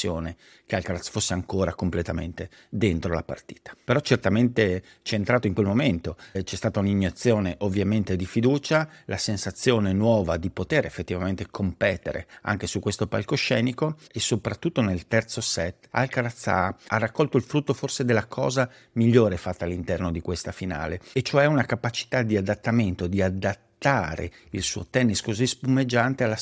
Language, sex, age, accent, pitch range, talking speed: Italian, male, 50-69, native, 95-125 Hz, 150 wpm